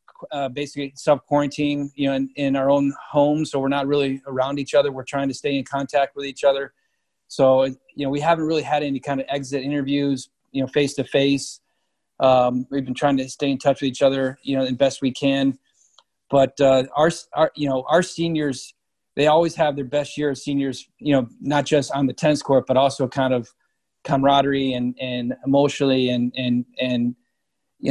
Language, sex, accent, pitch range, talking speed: English, male, American, 130-145 Hz, 210 wpm